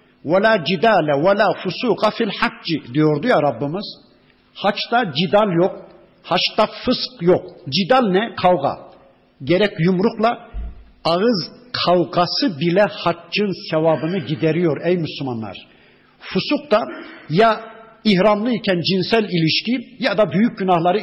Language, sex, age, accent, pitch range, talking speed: Turkish, male, 60-79, native, 155-210 Hz, 110 wpm